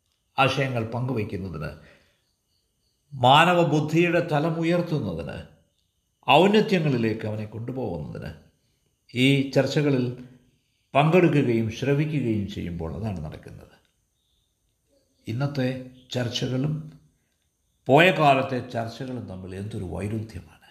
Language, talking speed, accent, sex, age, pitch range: Malayalam, 65 wpm, native, male, 50-69, 100-140 Hz